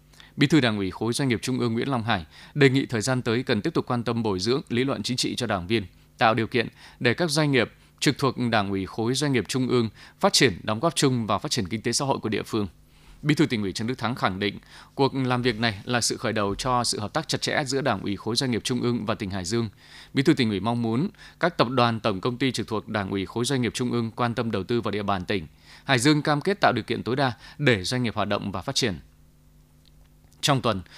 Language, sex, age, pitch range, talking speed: Vietnamese, male, 20-39, 105-130 Hz, 280 wpm